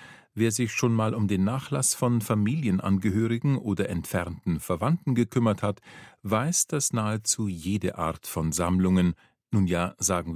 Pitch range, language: 90-115 Hz, German